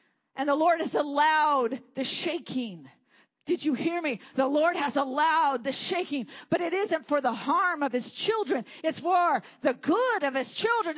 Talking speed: 180 wpm